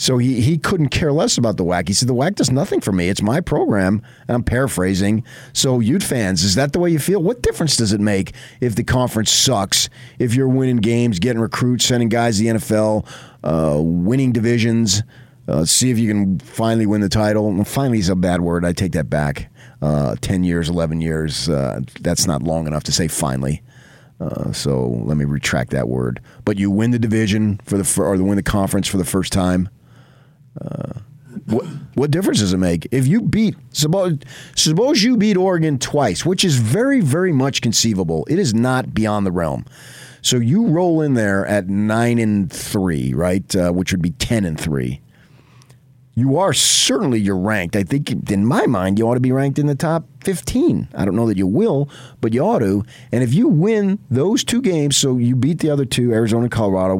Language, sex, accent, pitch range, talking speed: English, male, American, 100-135 Hz, 210 wpm